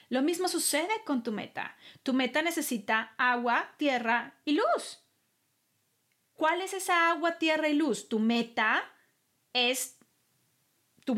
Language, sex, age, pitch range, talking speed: Spanish, female, 30-49, 250-320 Hz, 130 wpm